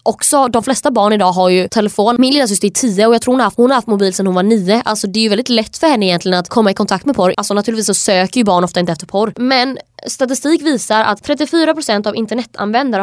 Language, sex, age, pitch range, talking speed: Swedish, female, 20-39, 190-240 Hz, 265 wpm